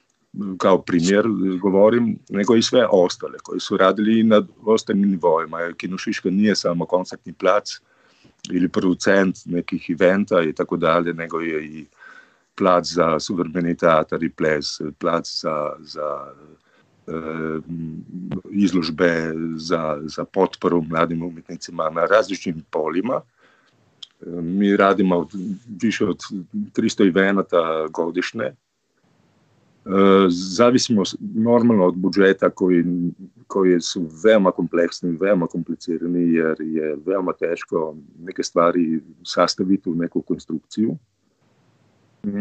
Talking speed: 110 wpm